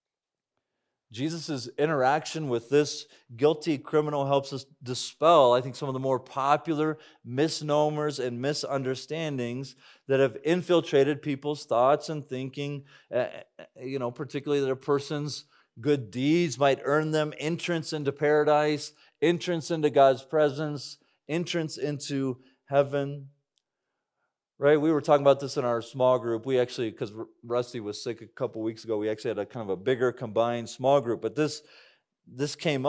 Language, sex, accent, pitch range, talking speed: English, male, American, 130-155 Hz, 150 wpm